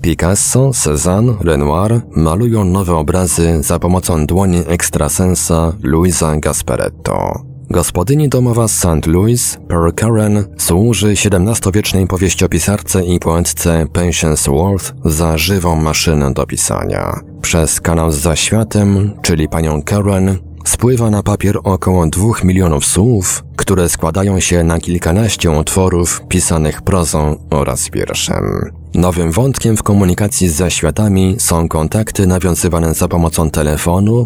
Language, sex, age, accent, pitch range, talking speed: Polish, male, 30-49, native, 80-100 Hz, 115 wpm